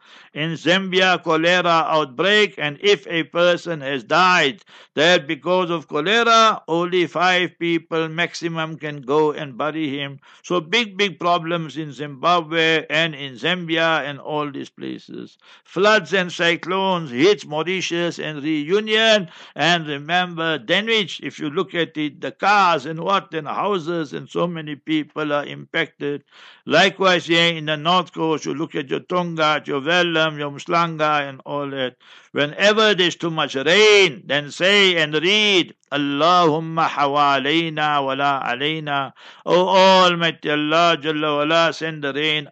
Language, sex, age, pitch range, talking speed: English, male, 60-79, 150-180 Hz, 140 wpm